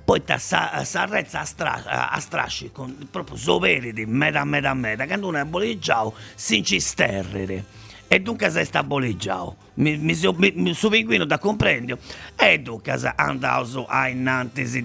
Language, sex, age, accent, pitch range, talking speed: Italian, male, 50-69, native, 105-150 Hz, 155 wpm